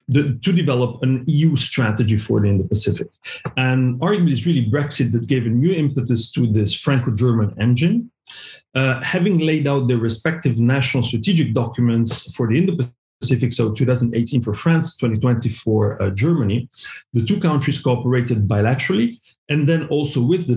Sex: male